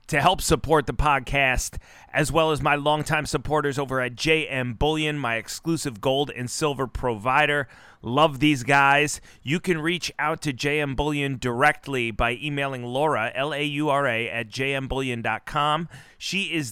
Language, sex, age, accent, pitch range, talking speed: English, male, 30-49, American, 125-150 Hz, 145 wpm